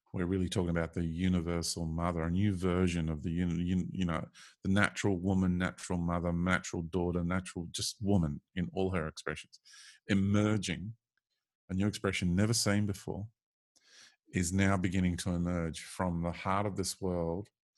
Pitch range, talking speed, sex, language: 85-100 Hz, 155 wpm, male, English